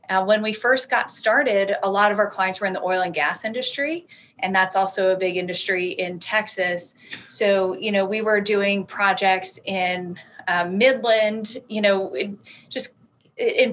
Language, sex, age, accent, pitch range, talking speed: English, female, 30-49, American, 180-200 Hz, 175 wpm